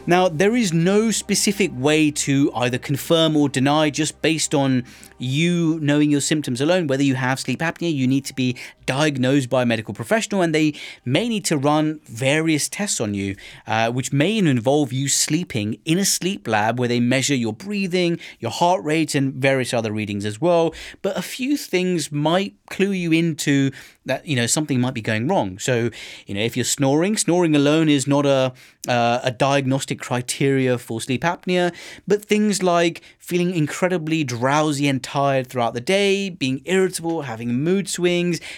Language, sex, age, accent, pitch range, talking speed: English, male, 30-49, British, 130-170 Hz, 180 wpm